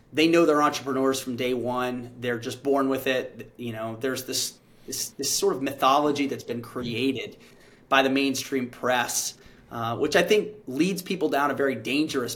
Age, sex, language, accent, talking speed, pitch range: 30-49, male, English, American, 185 wpm, 130-155 Hz